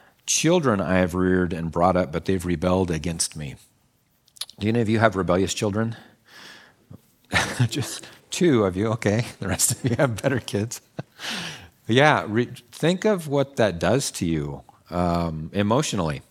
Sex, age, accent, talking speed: male, 40-59, American, 155 wpm